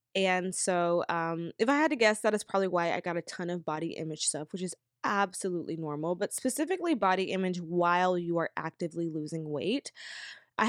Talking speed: 195 wpm